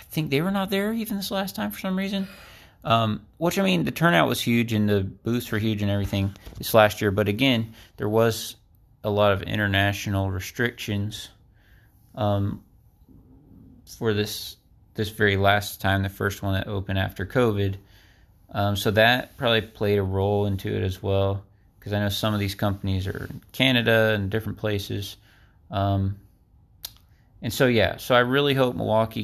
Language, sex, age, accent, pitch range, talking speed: English, male, 30-49, American, 100-115 Hz, 180 wpm